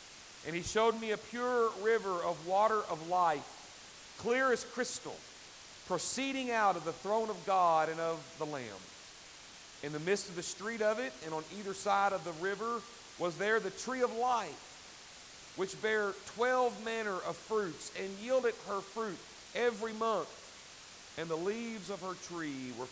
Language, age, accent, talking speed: English, 40-59, American, 170 wpm